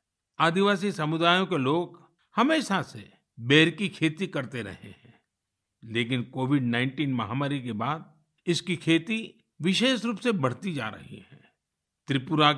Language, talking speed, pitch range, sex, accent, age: Kannada, 135 wpm, 130-190 Hz, male, native, 50-69